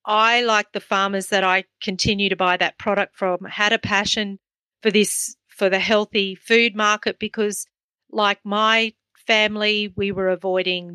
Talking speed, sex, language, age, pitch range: 160 wpm, female, English, 40-59, 185-215 Hz